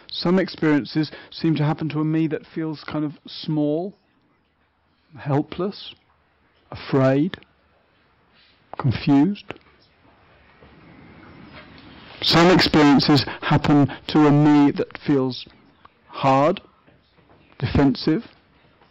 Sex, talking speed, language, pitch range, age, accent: male, 85 wpm, English, 130-160 Hz, 50-69, British